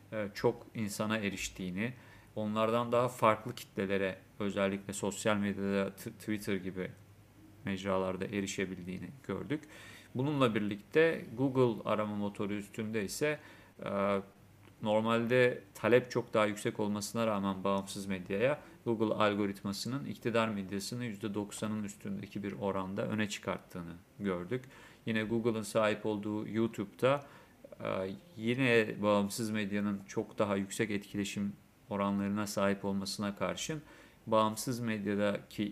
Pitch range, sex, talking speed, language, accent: 100-115 Hz, male, 105 wpm, Turkish, native